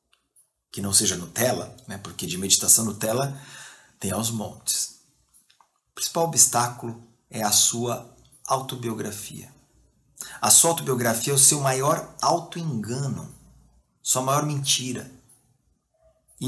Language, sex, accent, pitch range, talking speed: Portuguese, male, Brazilian, 110-155 Hz, 115 wpm